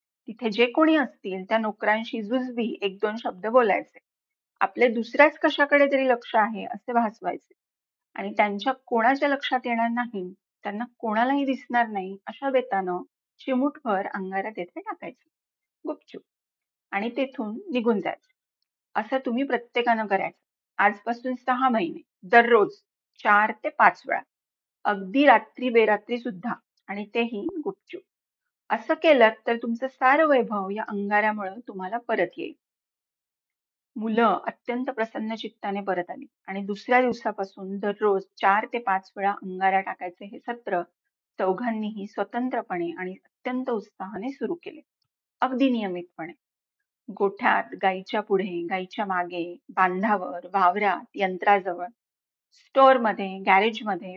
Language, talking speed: Marathi, 120 wpm